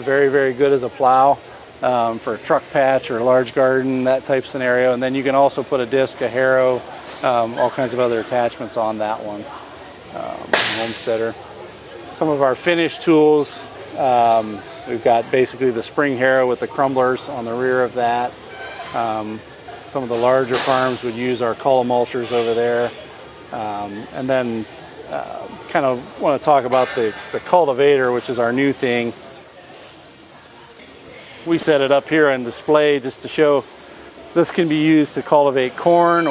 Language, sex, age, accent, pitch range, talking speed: English, male, 40-59, American, 120-140 Hz, 175 wpm